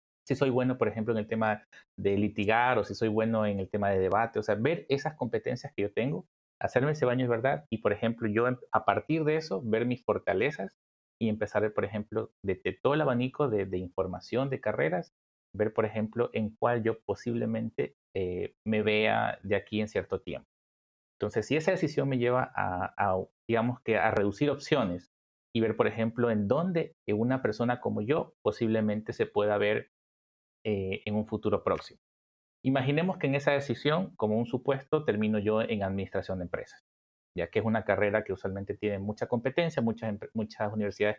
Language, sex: Spanish, male